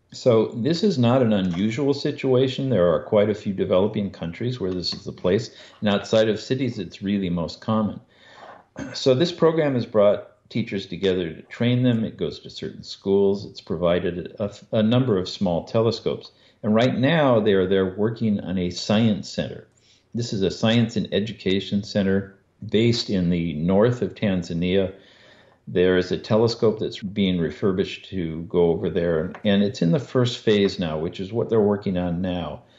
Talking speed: 180 wpm